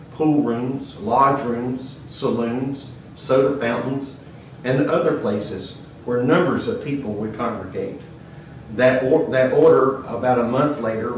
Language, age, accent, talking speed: English, 50-69, American, 125 wpm